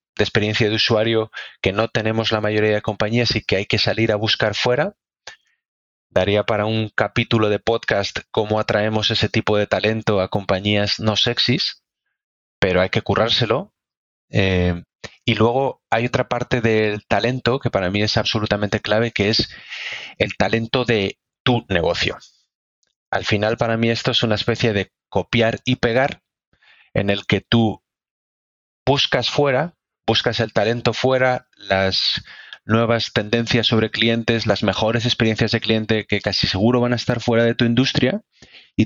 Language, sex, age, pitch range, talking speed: Spanish, male, 30-49, 100-115 Hz, 160 wpm